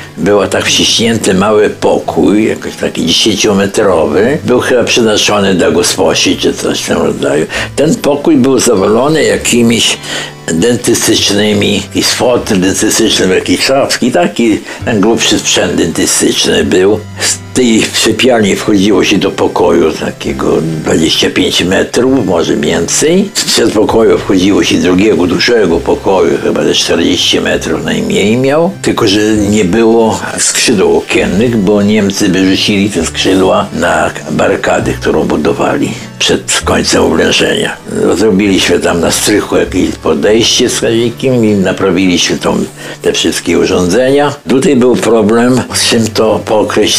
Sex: male